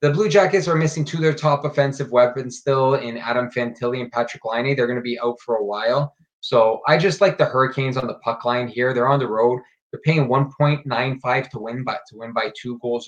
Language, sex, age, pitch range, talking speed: English, male, 20-39, 120-150 Hz, 230 wpm